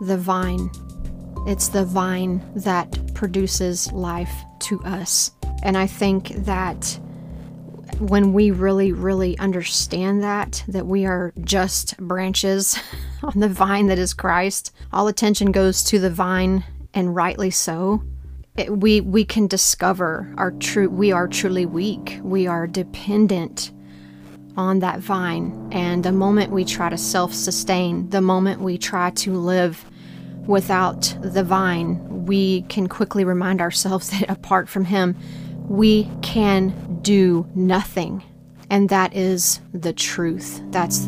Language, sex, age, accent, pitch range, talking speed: English, female, 30-49, American, 175-195 Hz, 135 wpm